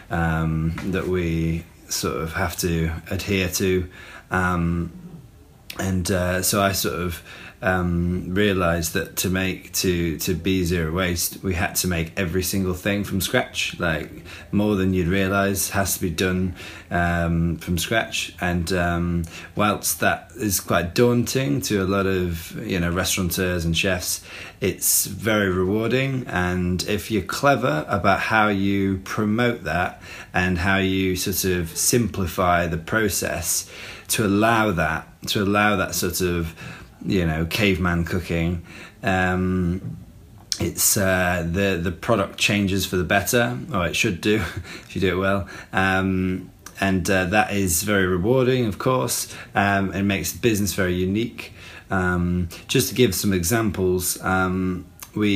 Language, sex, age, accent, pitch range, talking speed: English, male, 20-39, British, 90-100 Hz, 150 wpm